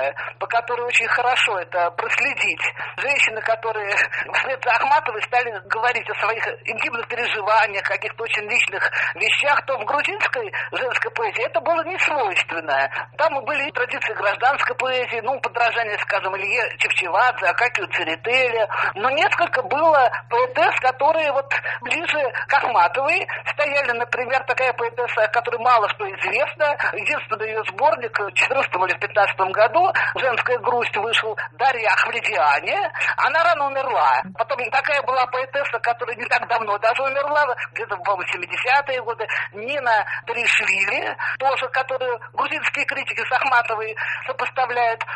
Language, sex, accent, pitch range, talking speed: Russian, male, native, 235-305 Hz, 130 wpm